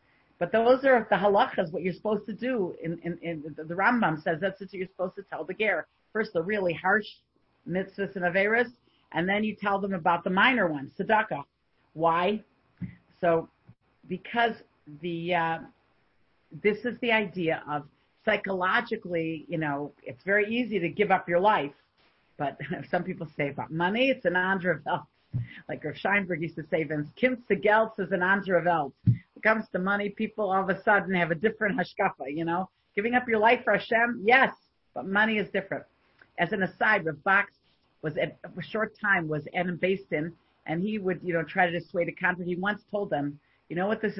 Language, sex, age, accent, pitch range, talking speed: English, female, 40-59, American, 170-210 Hz, 190 wpm